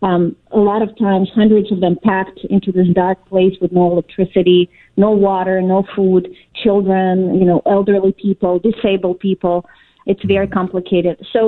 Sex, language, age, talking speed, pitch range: female, English, 40-59, 160 wpm, 185-210 Hz